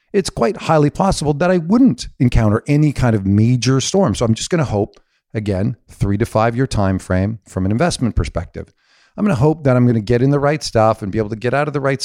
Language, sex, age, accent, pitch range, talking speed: English, male, 50-69, American, 95-130 Hz, 255 wpm